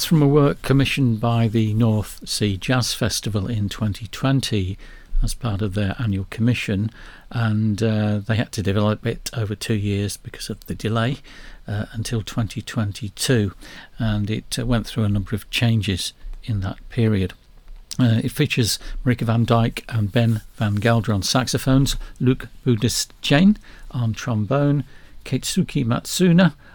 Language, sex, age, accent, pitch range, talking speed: English, male, 60-79, British, 105-130 Hz, 145 wpm